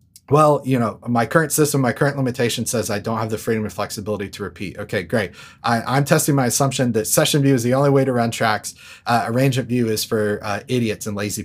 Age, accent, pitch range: 30-49, American, 110-140 Hz